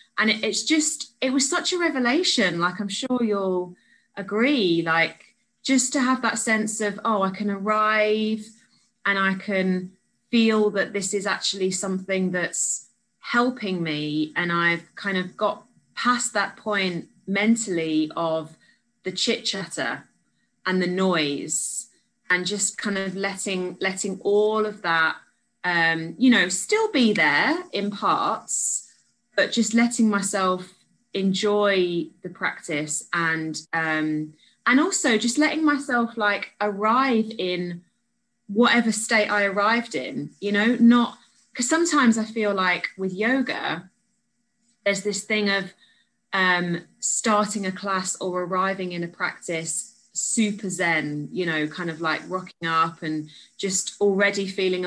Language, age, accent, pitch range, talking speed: English, 20-39, British, 180-230 Hz, 135 wpm